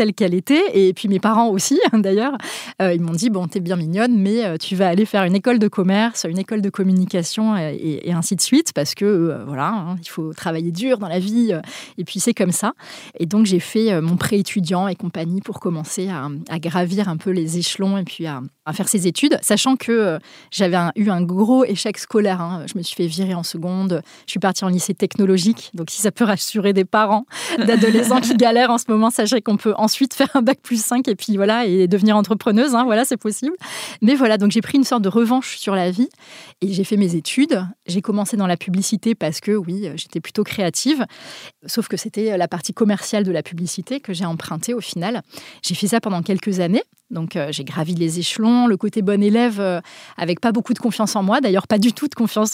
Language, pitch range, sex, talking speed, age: French, 180-225 Hz, female, 235 wpm, 20-39